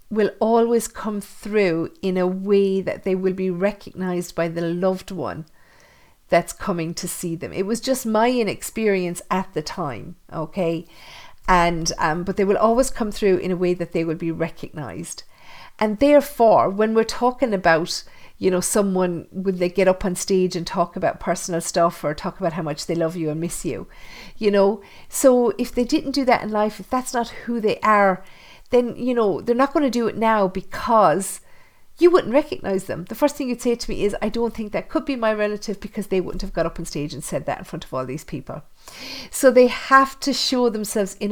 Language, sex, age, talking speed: English, female, 50-69, 215 wpm